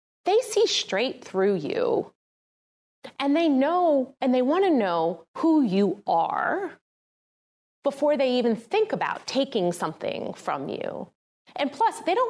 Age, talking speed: 30-49, 140 wpm